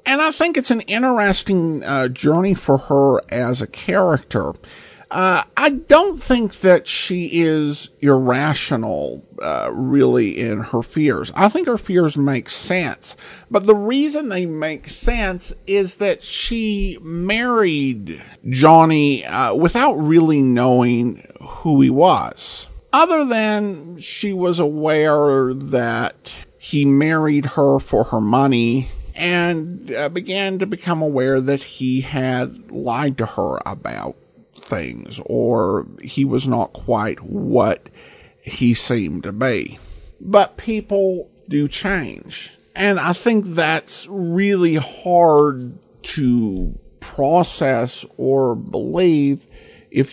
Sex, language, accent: male, English, American